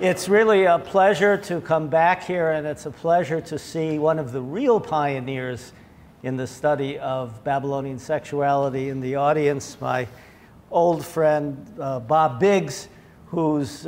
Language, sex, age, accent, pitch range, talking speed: English, male, 50-69, American, 145-180 Hz, 150 wpm